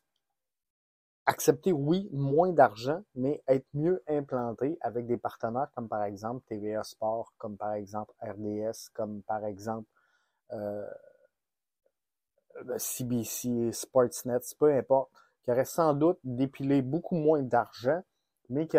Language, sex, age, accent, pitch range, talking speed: French, male, 30-49, Canadian, 115-150 Hz, 120 wpm